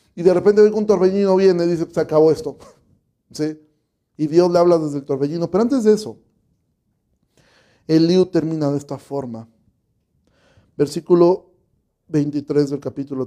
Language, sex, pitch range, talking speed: Spanish, male, 135-170 Hz, 140 wpm